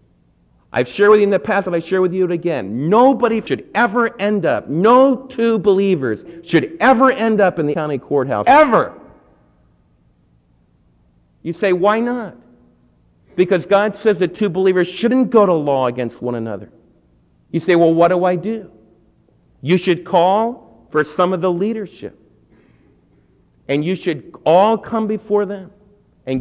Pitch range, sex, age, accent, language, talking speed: 150-225 Hz, male, 50-69, American, English, 160 wpm